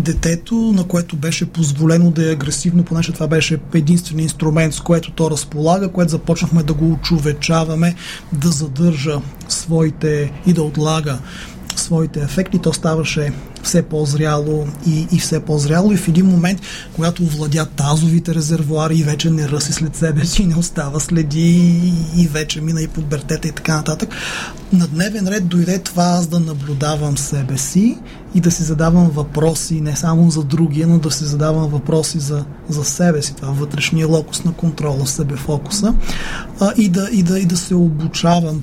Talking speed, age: 170 wpm, 30-49